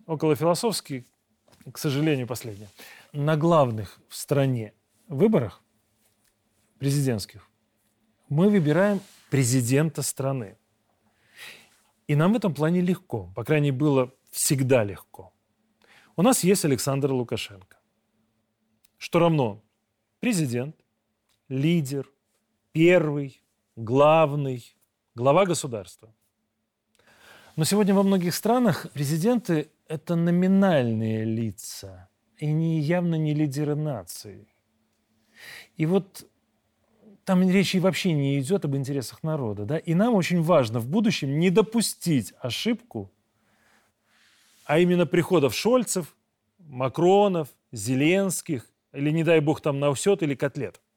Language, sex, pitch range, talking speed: Russian, male, 110-170 Hz, 105 wpm